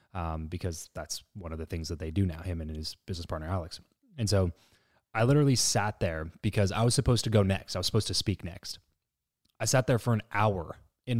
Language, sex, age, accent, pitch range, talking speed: English, male, 20-39, American, 90-110 Hz, 230 wpm